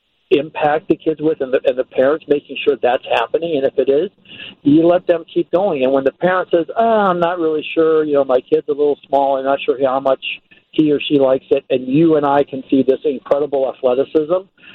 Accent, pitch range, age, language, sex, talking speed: American, 130-165 Hz, 50-69, English, male, 230 wpm